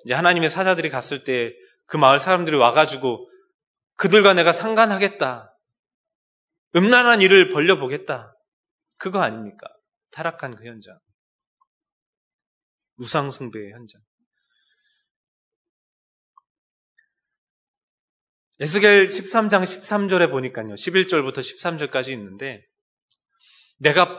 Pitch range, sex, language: 150-240 Hz, male, Korean